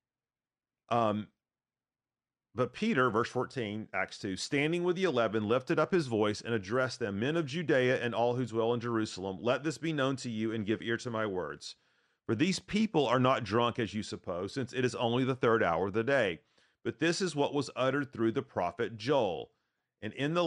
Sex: male